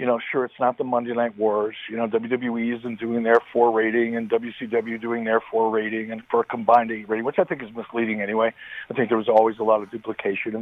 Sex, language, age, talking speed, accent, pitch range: male, English, 50-69, 255 wpm, American, 115-145 Hz